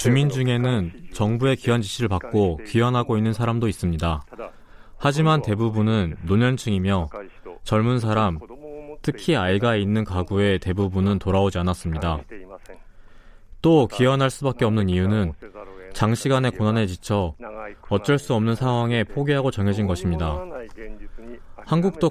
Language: Korean